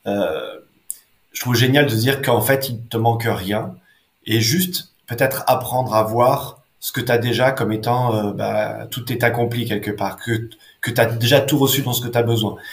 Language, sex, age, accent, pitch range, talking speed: French, male, 20-39, French, 115-130 Hz, 210 wpm